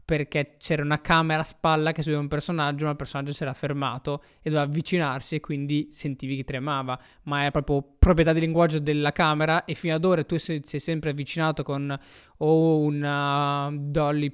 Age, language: 20-39, Italian